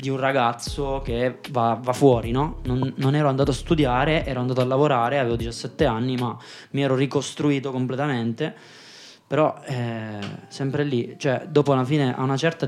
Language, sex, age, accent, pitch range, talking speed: Italian, male, 20-39, native, 125-155 Hz, 175 wpm